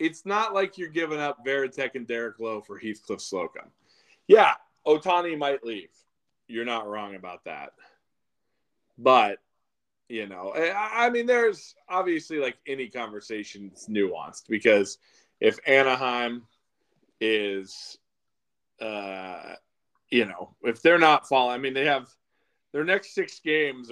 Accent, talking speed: American, 130 wpm